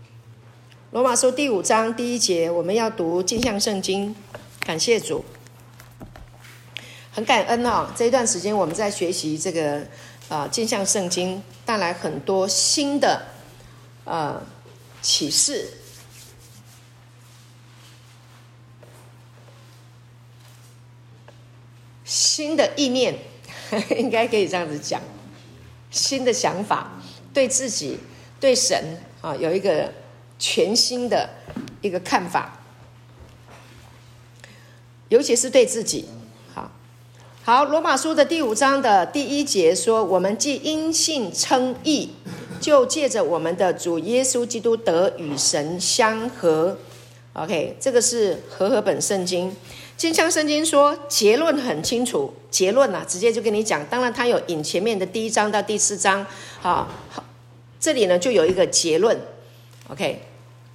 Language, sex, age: Chinese, female, 50-69